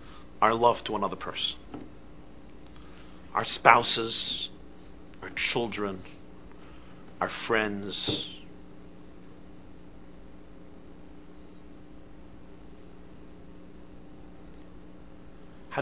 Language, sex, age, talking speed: English, male, 50-69, 45 wpm